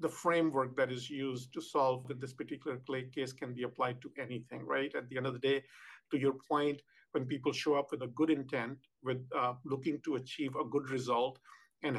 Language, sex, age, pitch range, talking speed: English, male, 50-69, 130-150 Hz, 210 wpm